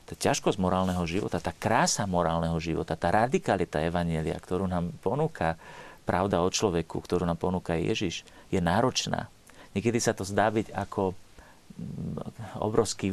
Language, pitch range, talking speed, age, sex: Slovak, 85-105 Hz, 135 wpm, 40-59, male